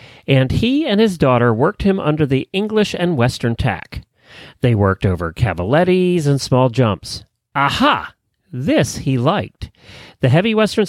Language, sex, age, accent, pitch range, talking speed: English, male, 40-59, American, 120-185 Hz, 150 wpm